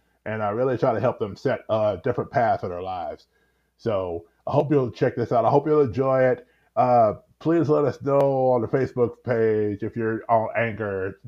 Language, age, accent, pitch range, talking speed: English, 30-49, American, 115-140 Hz, 205 wpm